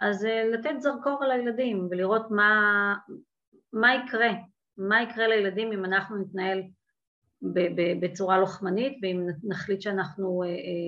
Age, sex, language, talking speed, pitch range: 30-49, female, Hebrew, 110 wpm, 190-245 Hz